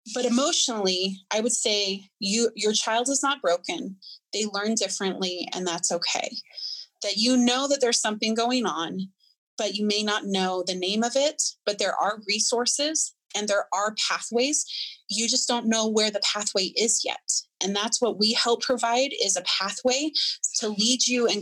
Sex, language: female, English